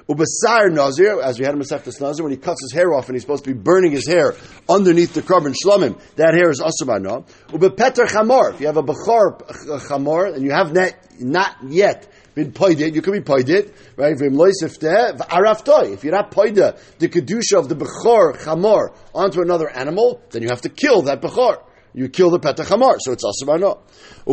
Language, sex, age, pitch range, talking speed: English, male, 50-69, 145-235 Hz, 205 wpm